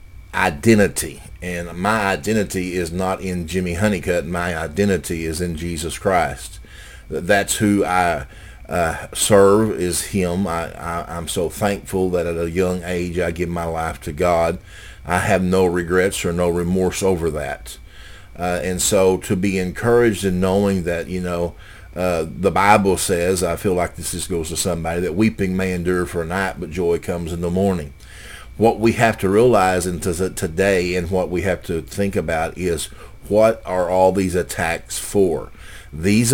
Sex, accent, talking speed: male, American, 170 wpm